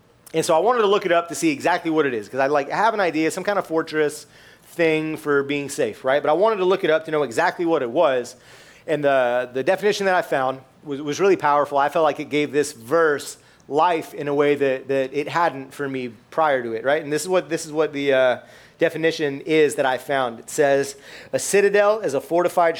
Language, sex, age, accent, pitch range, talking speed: English, male, 30-49, American, 140-175 Hz, 250 wpm